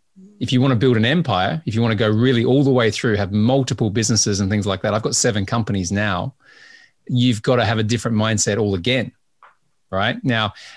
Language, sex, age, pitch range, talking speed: English, male, 30-49, 110-135 Hz, 225 wpm